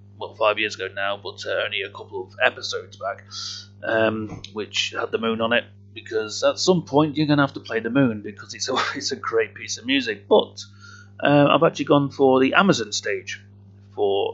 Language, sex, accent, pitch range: English, male, British, 100-140 Hz